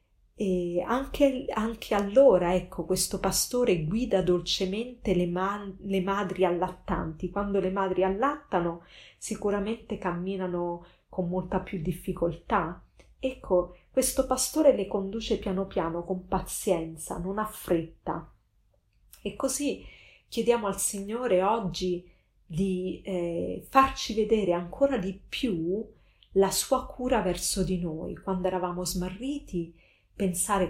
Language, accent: Italian, native